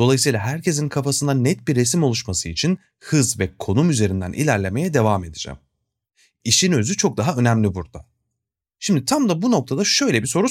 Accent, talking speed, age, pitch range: native, 165 wpm, 30-49, 100-170 Hz